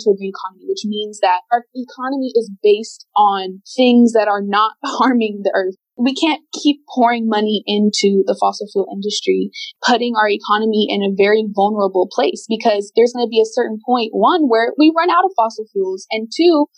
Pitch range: 185-230 Hz